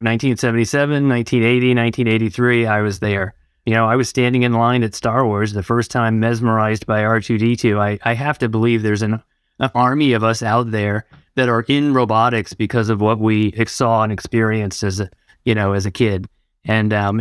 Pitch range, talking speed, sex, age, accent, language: 105-120 Hz, 190 wpm, male, 30-49, American, English